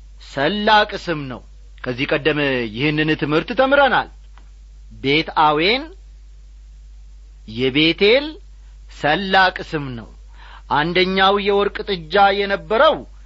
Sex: male